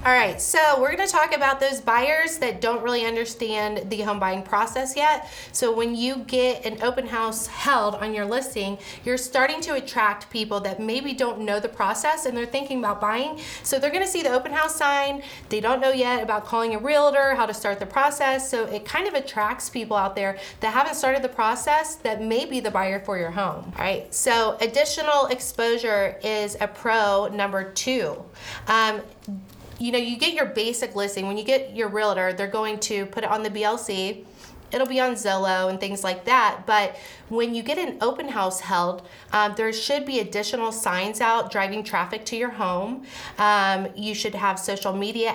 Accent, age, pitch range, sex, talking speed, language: American, 30-49, 200-260 Hz, female, 205 wpm, English